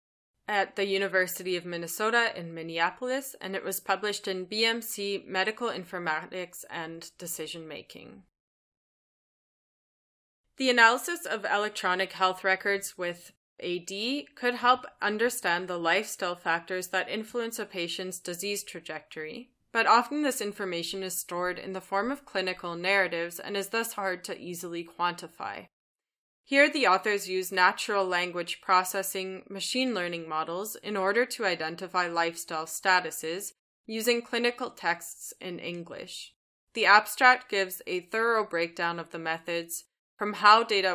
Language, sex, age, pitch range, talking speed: English, female, 20-39, 170-210 Hz, 130 wpm